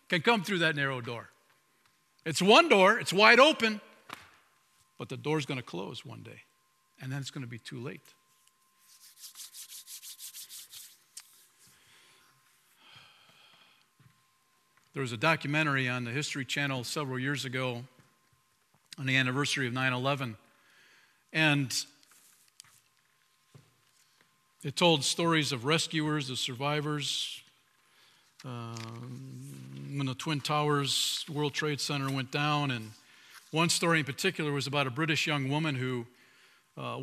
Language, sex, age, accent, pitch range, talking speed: English, male, 50-69, American, 130-160 Hz, 120 wpm